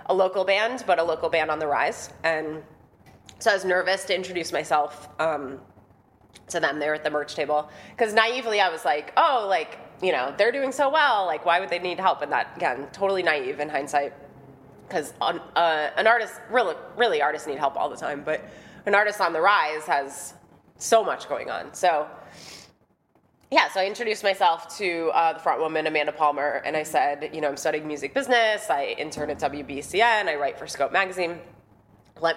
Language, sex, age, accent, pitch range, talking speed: English, female, 20-39, American, 150-190 Hz, 200 wpm